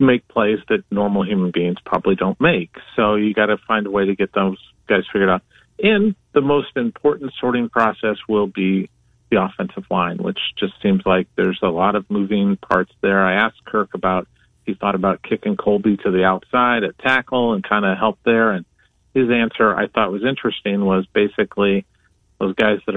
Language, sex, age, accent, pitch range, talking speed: English, male, 40-59, American, 95-120 Hz, 195 wpm